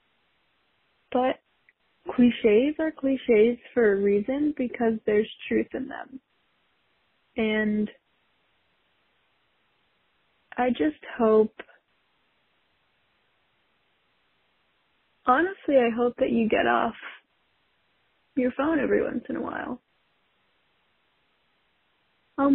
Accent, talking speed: American, 80 wpm